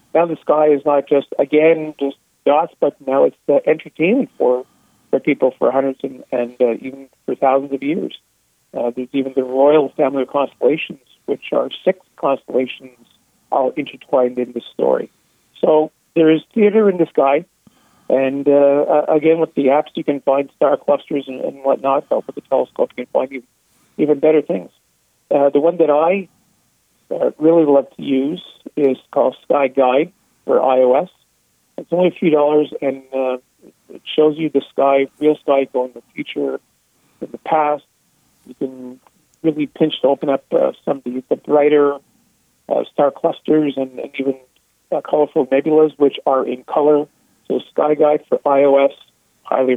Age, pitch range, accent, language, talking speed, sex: 50-69, 130-155 Hz, American, English, 175 wpm, male